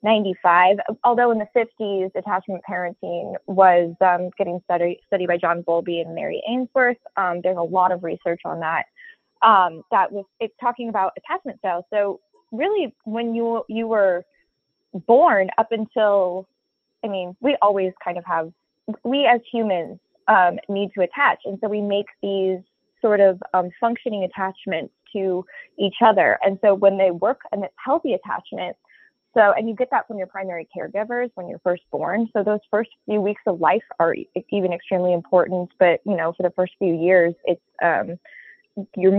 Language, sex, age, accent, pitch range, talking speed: English, female, 20-39, American, 180-215 Hz, 175 wpm